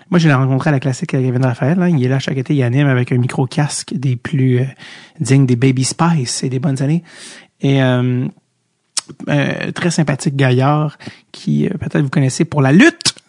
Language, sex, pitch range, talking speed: French, male, 140-180 Hz, 210 wpm